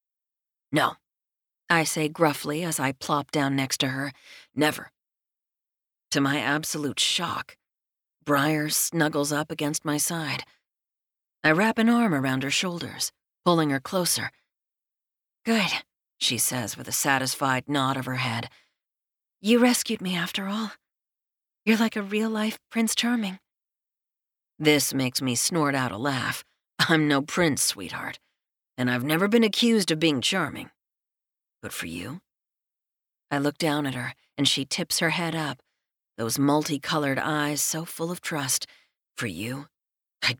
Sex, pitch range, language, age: female, 135-170 Hz, English, 40-59